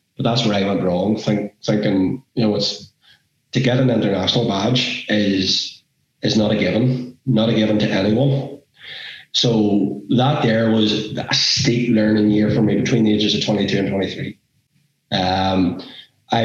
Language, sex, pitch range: English, male, 105-130 Hz